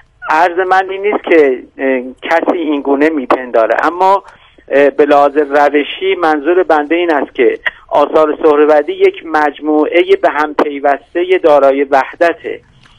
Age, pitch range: 50-69, 140-180 Hz